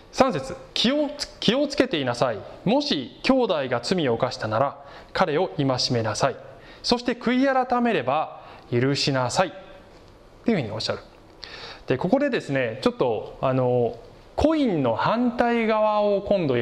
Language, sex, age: Japanese, male, 20-39